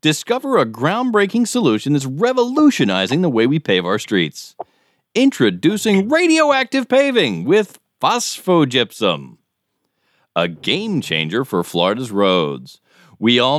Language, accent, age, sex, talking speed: English, American, 40-59, male, 110 wpm